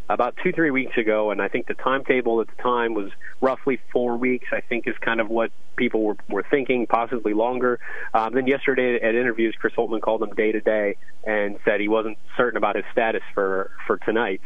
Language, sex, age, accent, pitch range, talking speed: English, male, 30-49, American, 105-125 Hz, 210 wpm